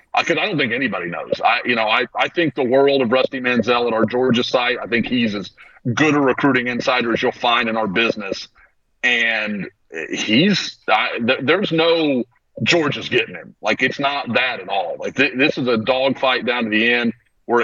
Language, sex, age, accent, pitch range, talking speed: English, male, 40-59, American, 115-145 Hz, 215 wpm